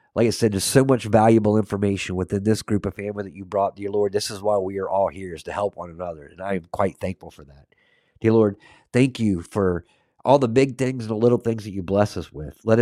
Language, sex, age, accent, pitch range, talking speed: English, male, 50-69, American, 95-115 Hz, 260 wpm